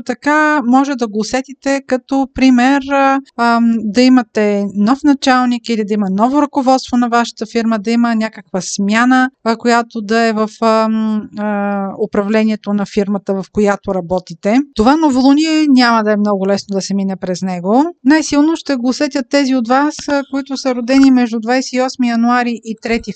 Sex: female